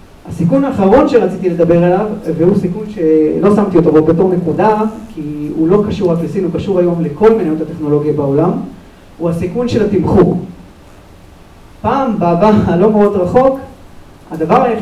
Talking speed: 145 wpm